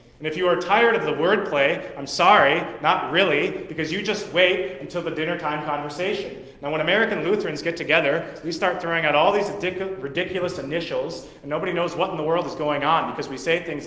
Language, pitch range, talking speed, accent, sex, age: English, 145-185 Hz, 210 wpm, American, male, 30-49